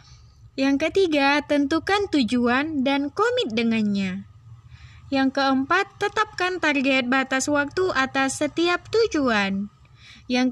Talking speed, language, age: 95 wpm, Indonesian, 20-39